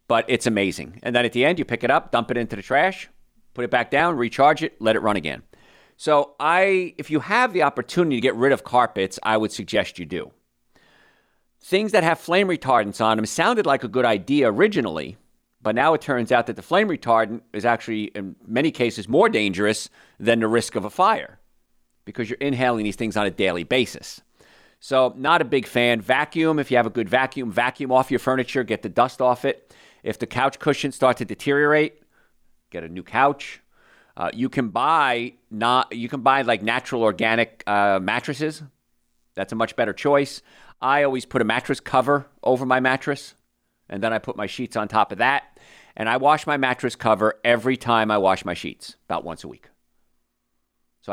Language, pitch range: English, 110-135 Hz